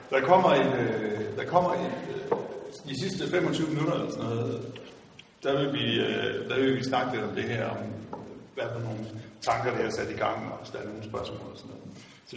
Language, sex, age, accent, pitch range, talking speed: Danish, male, 60-79, native, 115-155 Hz, 210 wpm